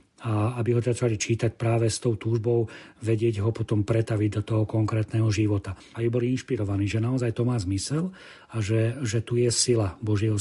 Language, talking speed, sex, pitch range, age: Slovak, 190 wpm, male, 105-115 Hz, 40-59